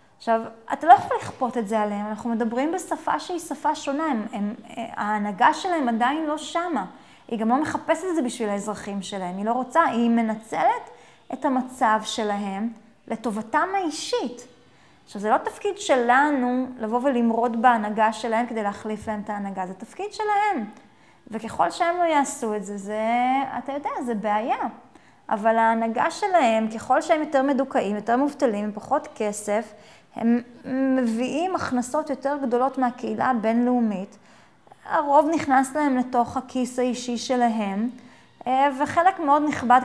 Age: 20-39